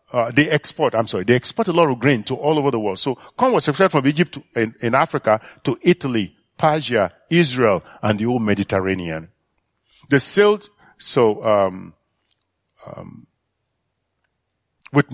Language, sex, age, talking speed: English, male, 50-69, 160 wpm